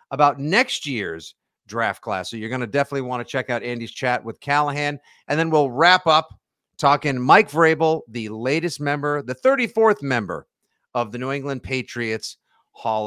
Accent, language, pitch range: American, English, 120-165 Hz